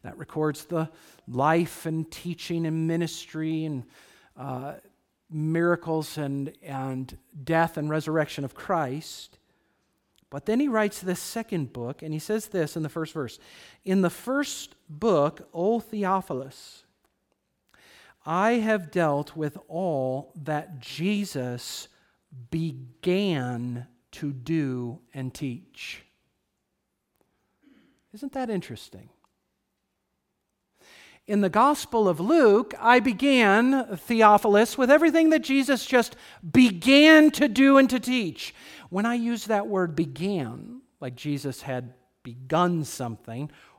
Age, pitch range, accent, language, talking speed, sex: 50-69, 150-235 Hz, American, English, 115 wpm, male